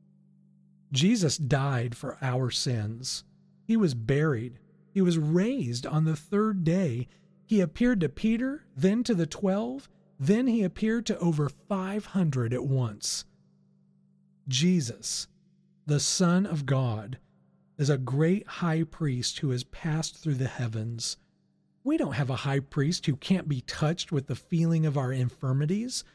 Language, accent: English, American